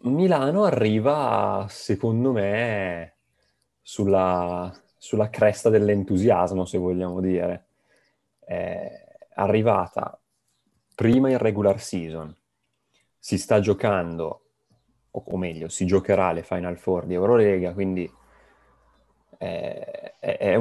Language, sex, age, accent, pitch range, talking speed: Italian, male, 30-49, native, 90-110 Hz, 95 wpm